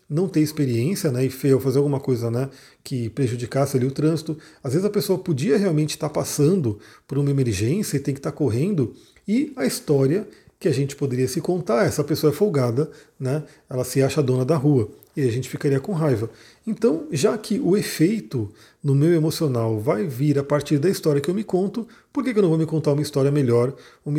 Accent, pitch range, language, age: Brazilian, 135-185 Hz, Portuguese, 40-59